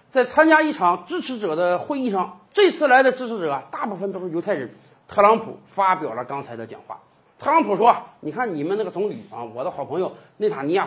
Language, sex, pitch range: Chinese, male, 225-330 Hz